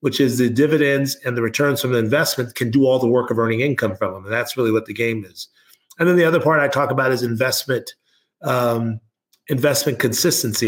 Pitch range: 120-145 Hz